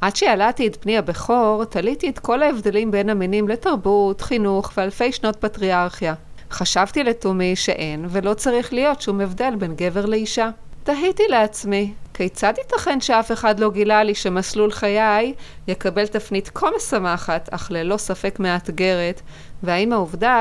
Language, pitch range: Hebrew, 190-230 Hz